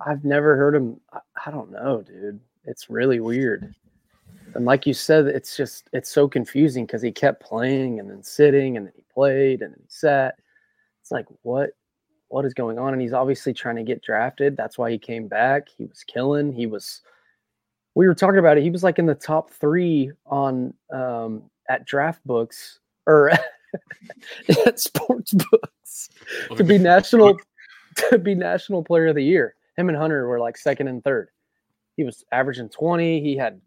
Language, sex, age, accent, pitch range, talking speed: English, male, 20-39, American, 125-165 Hz, 190 wpm